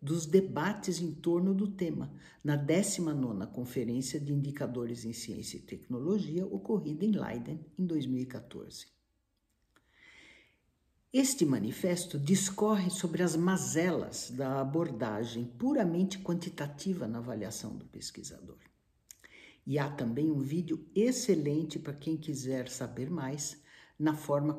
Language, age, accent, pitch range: Portuguese, 60-79, Brazilian, 130-180 Hz